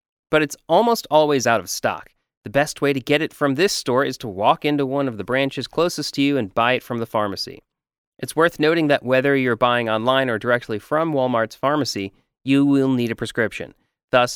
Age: 30-49